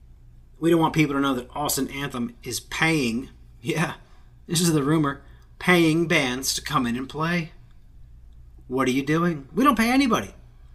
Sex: male